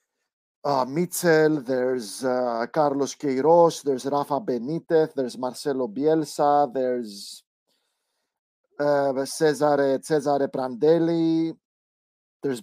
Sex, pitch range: male, 135-165 Hz